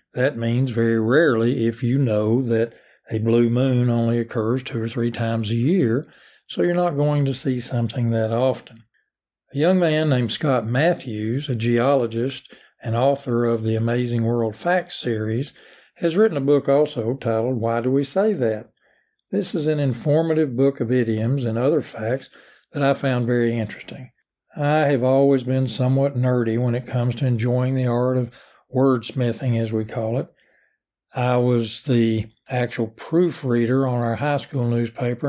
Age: 60-79